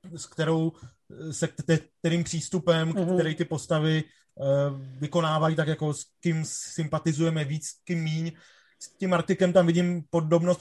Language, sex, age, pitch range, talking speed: Czech, male, 30-49, 155-170 Hz, 135 wpm